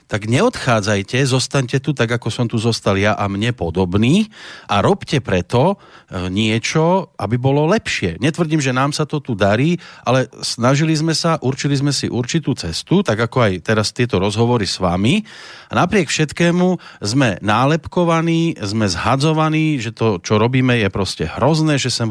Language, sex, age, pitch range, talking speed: Slovak, male, 40-59, 115-155 Hz, 160 wpm